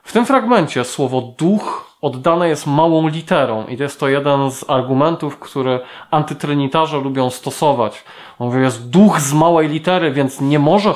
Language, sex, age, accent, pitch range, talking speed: Polish, male, 20-39, native, 125-155 Hz, 160 wpm